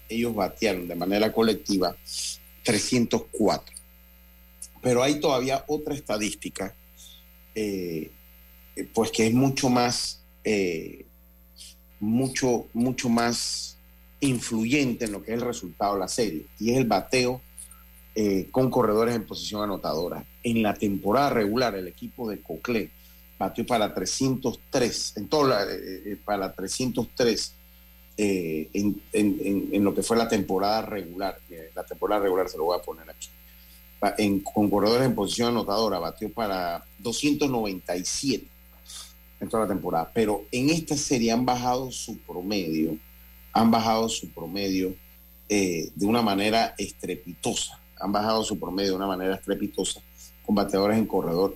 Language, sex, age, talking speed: Spanish, male, 40-59, 140 wpm